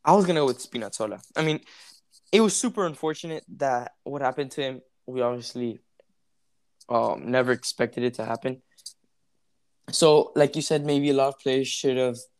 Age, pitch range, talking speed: 10-29, 120-135 Hz, 180 wpm